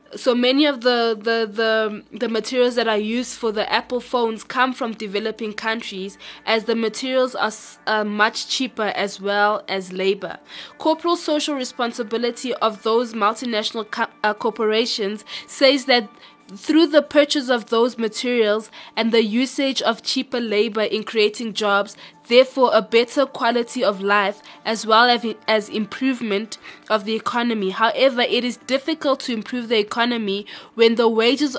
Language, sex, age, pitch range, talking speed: English, female, 20-39, 215-245 Hz, 150 wpm